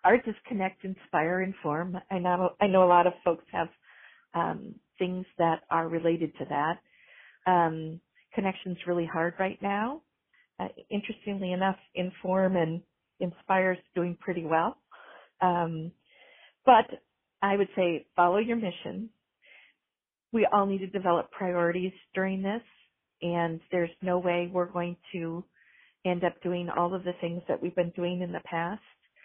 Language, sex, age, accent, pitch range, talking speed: English, female, 40-59, American, 170-195 Hz, 150 wpm